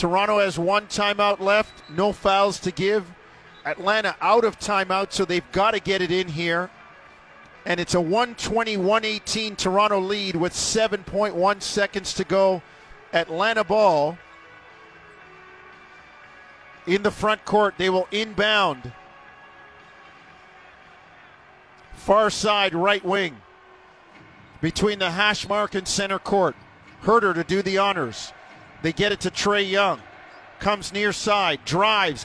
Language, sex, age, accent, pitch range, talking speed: English, male, 50-69, American, 195-245 Hz, 125 wpm